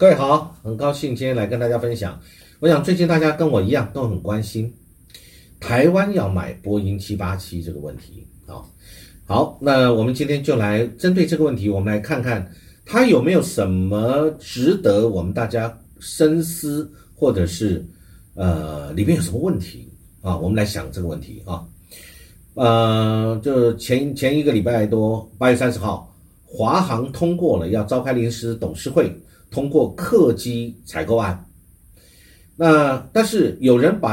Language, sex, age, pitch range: Chinese, male, 50-69, 95-130 Hz